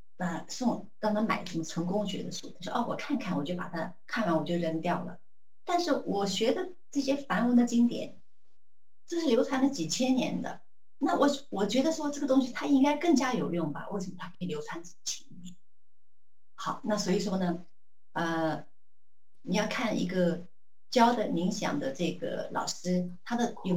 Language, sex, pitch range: Chinese, female, 180-245 Hz